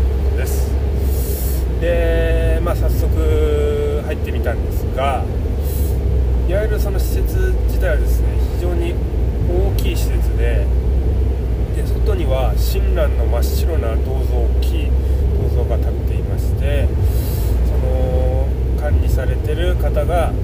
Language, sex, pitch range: Japanese, male, 70-90 Hz